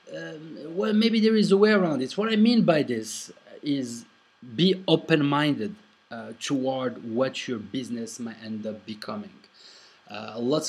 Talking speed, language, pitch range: 165 wpm, English, 110-155 Hz